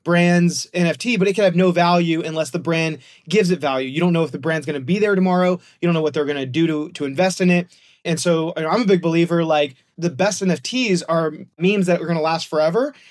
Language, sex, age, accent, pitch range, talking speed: English, male, 30-49, American, 165-190 Hz, 255 wpm